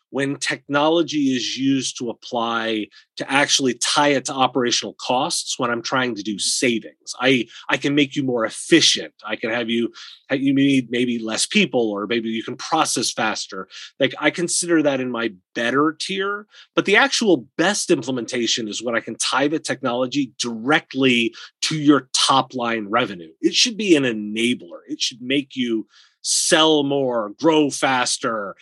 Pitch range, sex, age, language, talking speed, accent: 120-165 Hz, male, 30-49, English, 170 wpm, American